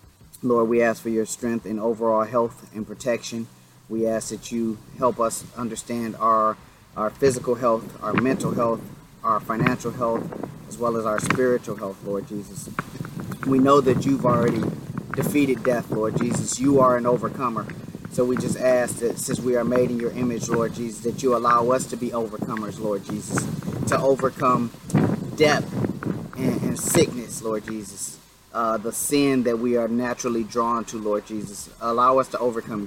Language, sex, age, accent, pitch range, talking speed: English, male, 30-49, American, 110-130 Hz, 175 wpm